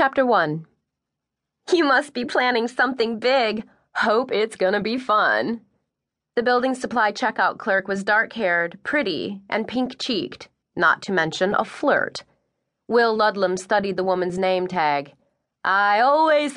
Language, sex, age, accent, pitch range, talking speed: English, female, 30-49, American, 180-225 Hz, 140 wpm